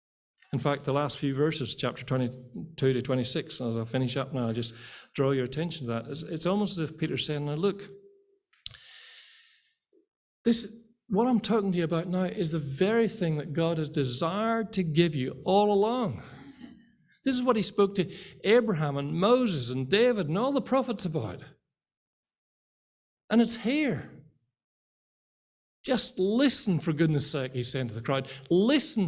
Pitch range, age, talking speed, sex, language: 135-225 Hz, 50-69, 165 wpm, male, English